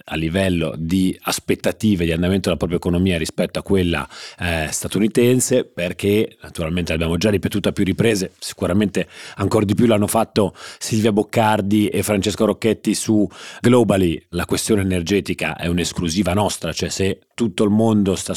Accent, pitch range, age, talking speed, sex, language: native, 90-110 Hz, 30-49, 155 wpm, male, Italian